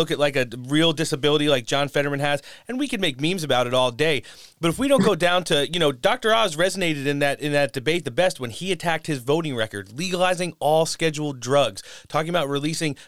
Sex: male